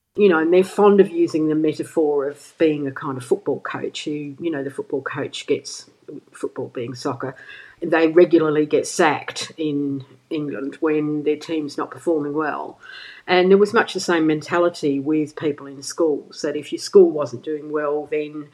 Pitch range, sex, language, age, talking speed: 150-180 Hz, female, English, 50-69, 190 wpm